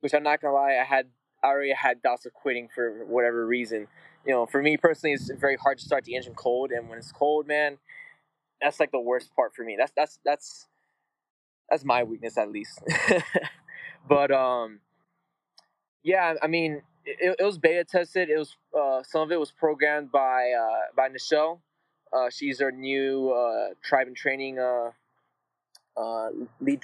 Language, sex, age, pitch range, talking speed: English, male, 20-39, 120-155 Hz, 185 wpm